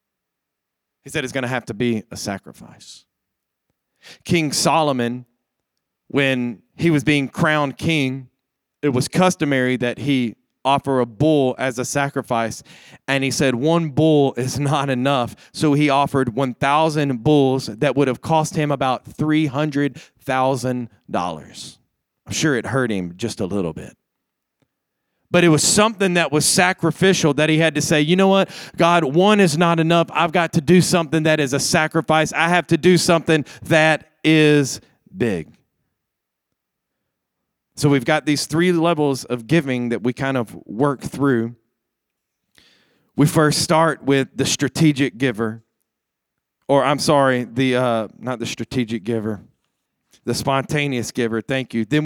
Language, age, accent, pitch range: English, 30-49, American, 125-155 Hz